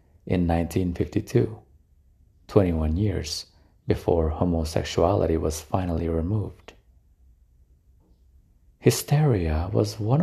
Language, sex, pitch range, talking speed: English, male, 80-105 Hz, 70 wpm